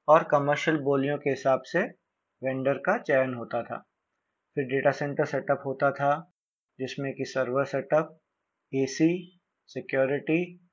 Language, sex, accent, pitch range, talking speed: Hindi, male, native, 135-170 Hz, 130 wpm